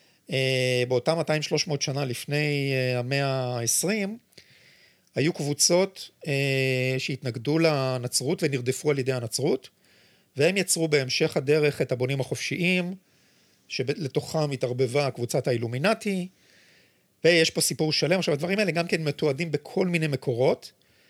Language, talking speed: Hebrew, 115 wpm